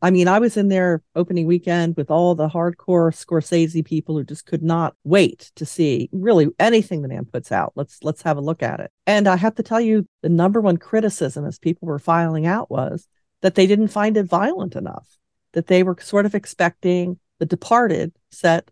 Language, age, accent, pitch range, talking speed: English, 50-69, American, 155-185 Hz, 210 wpm